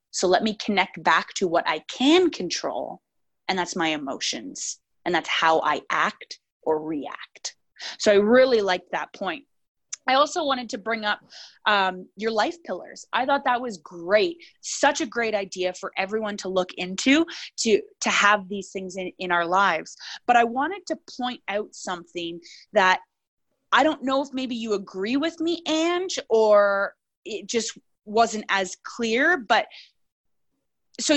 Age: 20-39